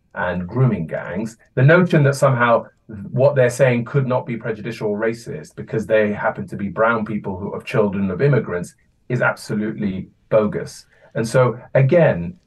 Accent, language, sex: British, English, male